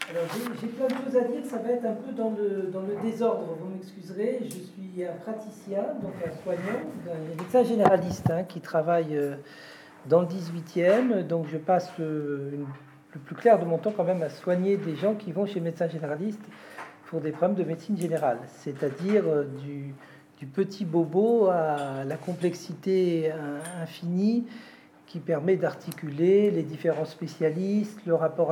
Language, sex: French, male